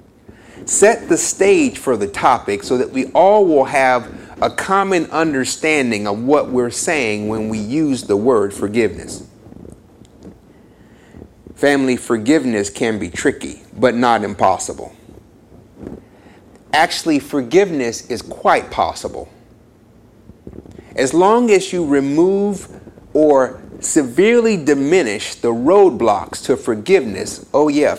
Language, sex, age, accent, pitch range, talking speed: English, male, 30-49, American, 110-180 Hz, 110 wpm